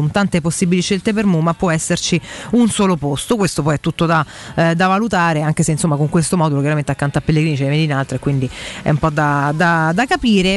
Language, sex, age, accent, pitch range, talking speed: Italian, female, 30-49, native, 160-200 Hz, 225 wpm